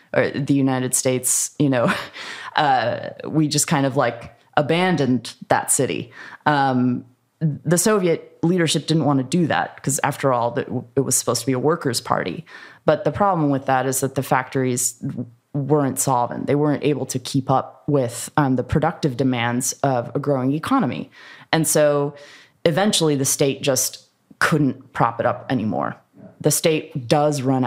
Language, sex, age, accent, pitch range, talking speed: English, female, 20-39, American, 130-155 Hz, 165 wpm